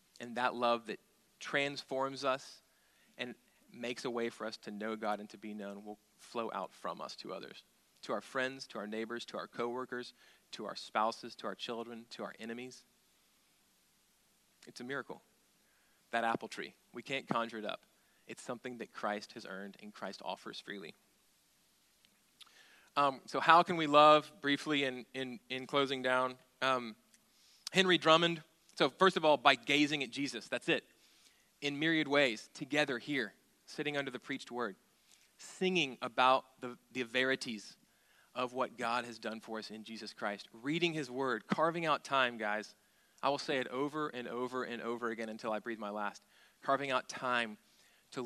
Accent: American